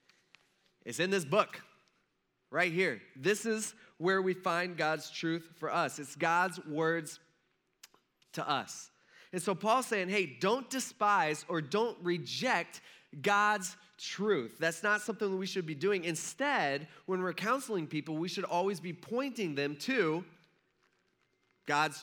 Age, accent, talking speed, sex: 20-39, American, 145 wpm, male